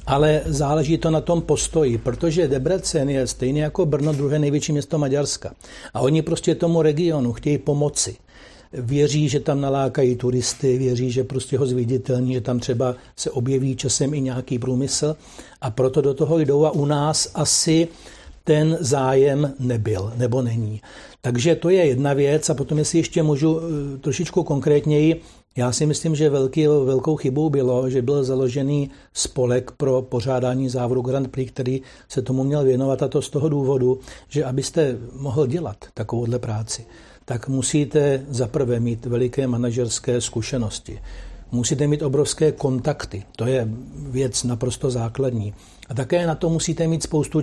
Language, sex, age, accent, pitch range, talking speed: Czech, male, 60-79, native, 125-155 Hz, 155 wpm